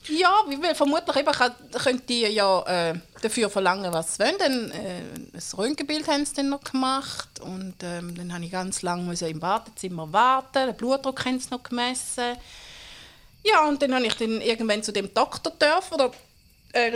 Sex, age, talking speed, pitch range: female, 30-49, 170 wpm, 195-275 Hz